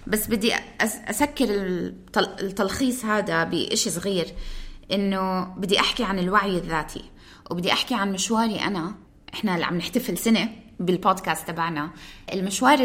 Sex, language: female, Arabic